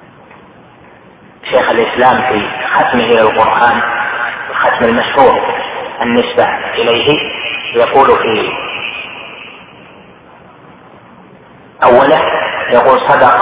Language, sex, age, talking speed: Arabic, male, 40-59, 65 wpm